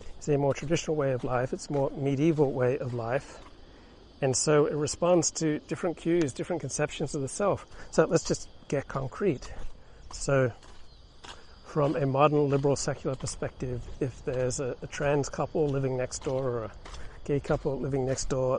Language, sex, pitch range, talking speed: English, male, 110-150 Hz, 170 wpm